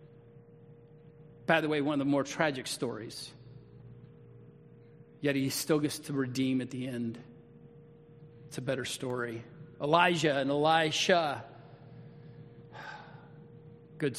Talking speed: 110 wpm